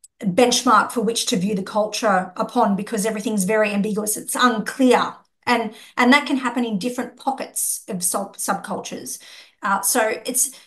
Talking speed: 155 wpm